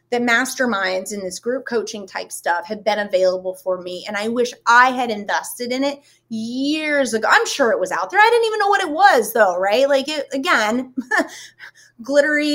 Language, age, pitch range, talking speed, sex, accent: English, 20-39, 195-270 Hz, 195 wpm, female, American